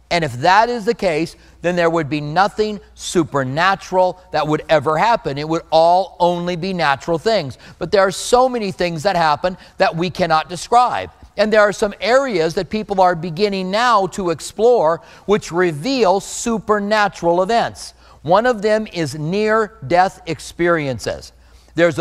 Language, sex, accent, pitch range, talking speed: English, male, American, 160-190 Hz, 160 wpm